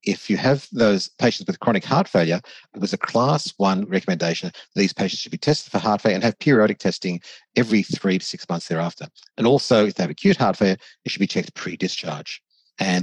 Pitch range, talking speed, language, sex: 90-130 Hz, 220 wpm, English, male